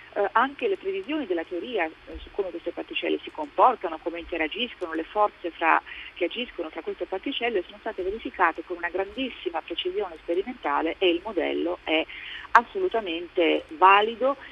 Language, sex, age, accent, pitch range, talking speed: Italian, female, 40-59, native, 165-265 Hz, 150 wpm